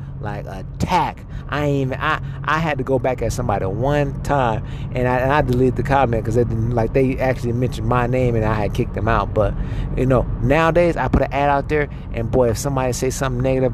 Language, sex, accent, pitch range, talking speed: English, male, American, 115-140 Hz, 225 wpm